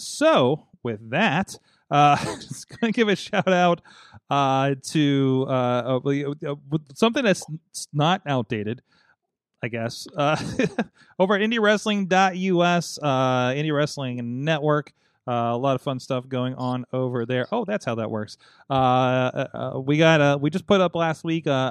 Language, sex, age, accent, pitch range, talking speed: English, male, 30-49, American, 125-170 Hz, 155 wpm